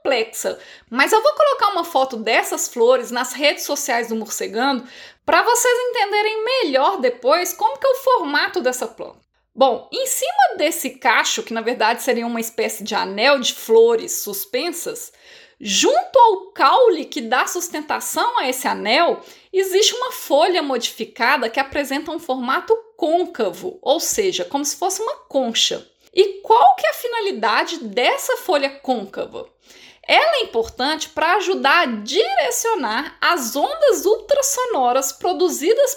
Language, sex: Portuguese, female